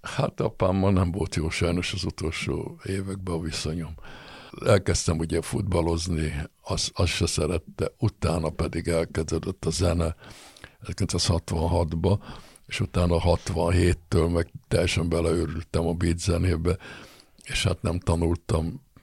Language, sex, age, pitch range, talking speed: Hungarian, male, 60-79, 80-95 Hz, 120 wpm